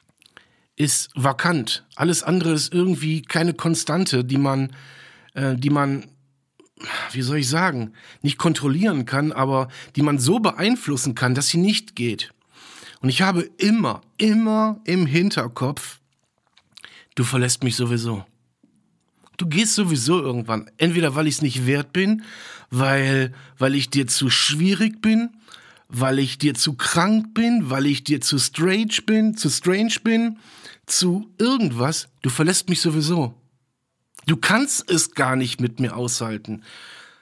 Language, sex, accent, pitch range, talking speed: German, male, German, 130-175 Hz, 140 wpm